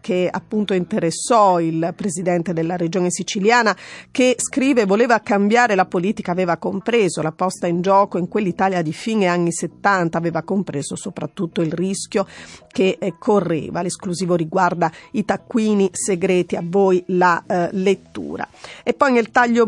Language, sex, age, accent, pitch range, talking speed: Italian, female, 40-59, native, 180-220 Hz, 145 wpm